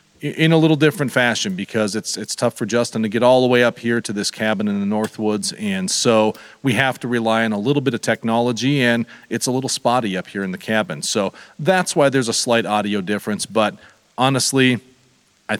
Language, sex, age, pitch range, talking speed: English, male, 40-59, 110-140 Hz, 220 wpm